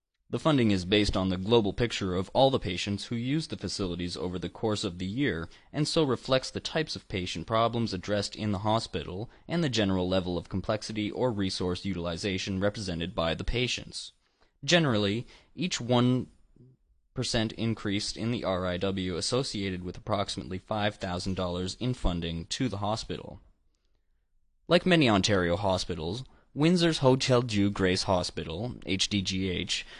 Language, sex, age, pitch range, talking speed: English, male, 20-39, 90-120 Hz, 145 wpm